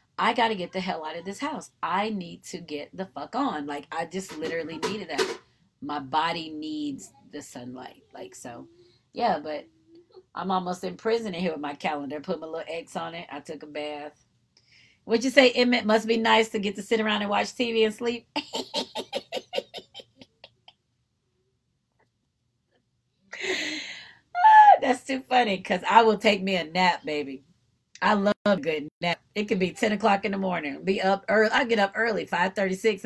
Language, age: English, 30-49